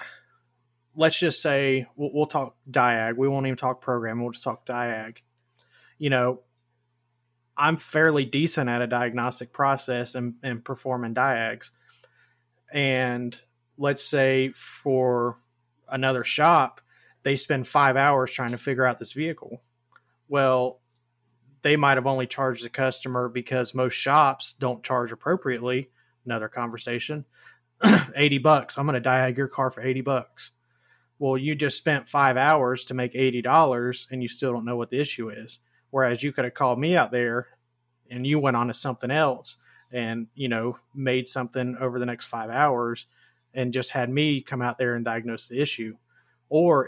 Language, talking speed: English, 160 wpm